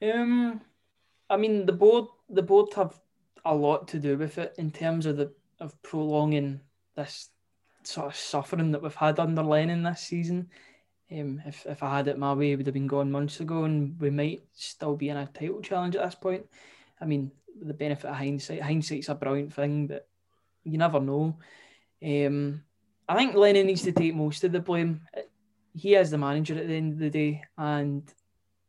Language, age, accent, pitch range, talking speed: English, 20-39, British, 145-185 Hz, 195 wpm